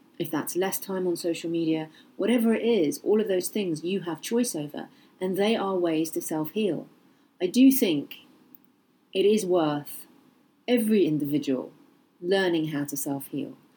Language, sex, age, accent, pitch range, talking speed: English, female, 40-59, British, 160-245 Hz, 155 wpm